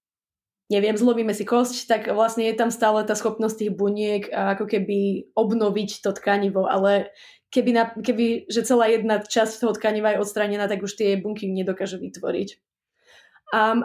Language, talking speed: Slovak, 155 wpm